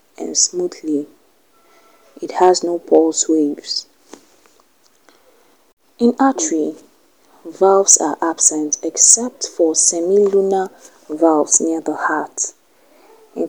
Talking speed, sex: 90 wpm, female